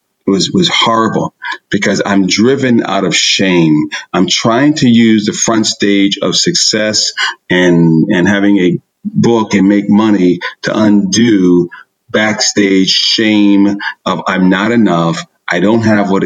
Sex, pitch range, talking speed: male, 90-115 Hz, 145 wpm